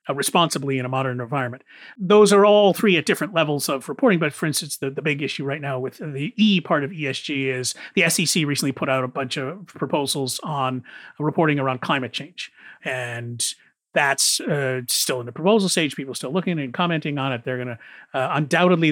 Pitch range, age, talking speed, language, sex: 130-175 Hz, 40-59, 205 wpm, English, male